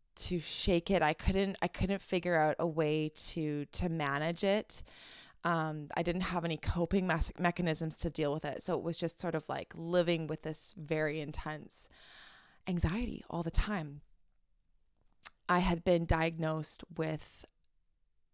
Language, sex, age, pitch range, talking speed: English, female, 20-39, 155-185 Hz, 155 wpm